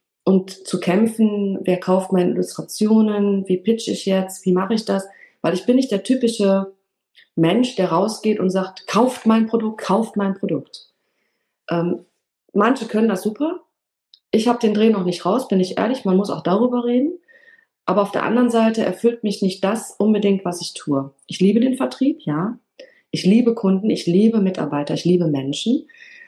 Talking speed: 180 wpm